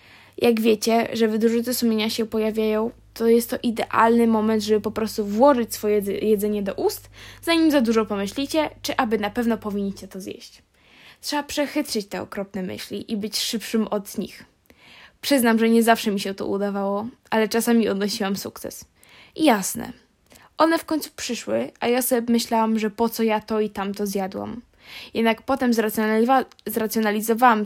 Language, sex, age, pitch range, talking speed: Polish, female, 10-29, 210-235 Hz, 160 wpm